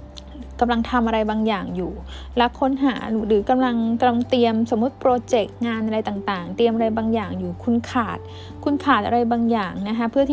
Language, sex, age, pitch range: Thai, female, 10-29, 205-245 Hz